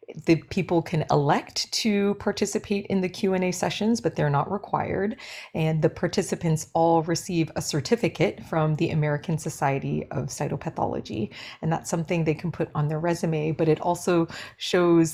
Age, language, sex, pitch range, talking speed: 30-49, English, female, 150-175 Hz, 160 wpm